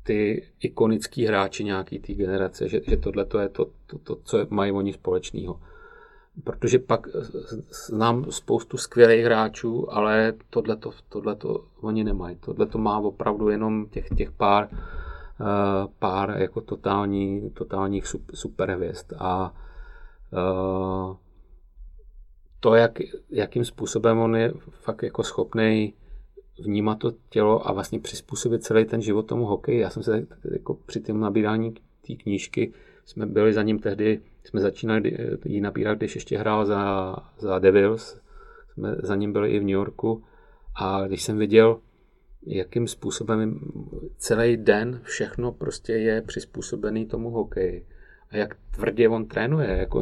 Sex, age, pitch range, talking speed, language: male, 40-59, 100-115 Hz, 135 wpm, Czech